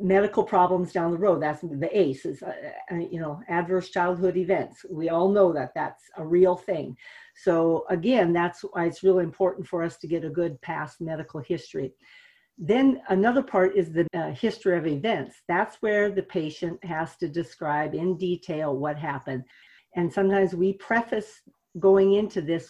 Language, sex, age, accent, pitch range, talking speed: English, female, 50-69, American, 170-195 Hz, 170 wpm